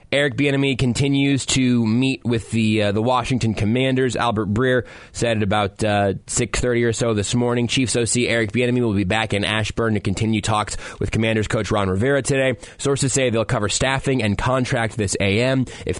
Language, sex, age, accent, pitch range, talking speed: English, male, 20-39, American, 105-125 Hz, 190 wpm